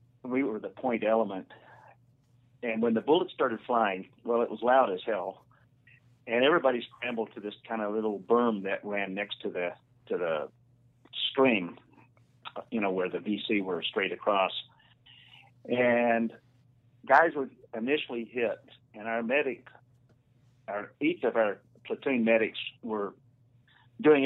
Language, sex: English, male